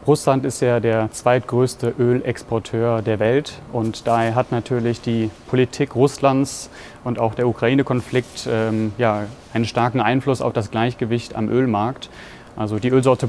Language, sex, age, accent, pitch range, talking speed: German, male, 30-49, German, 115-130 Hz, 140 wpm